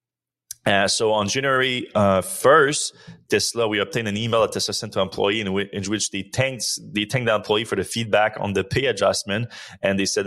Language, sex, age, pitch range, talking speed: English, male, 20-39, 95-115 Hz, 210 wpm